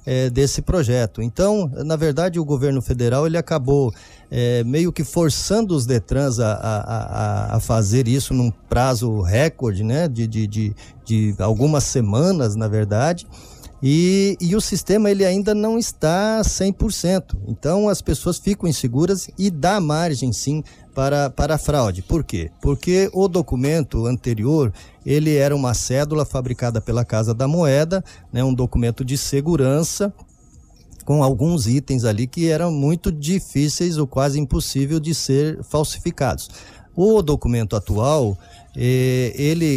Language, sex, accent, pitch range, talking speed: Portuguese, male, Brazilian, 115-160 Hz, 130 wpm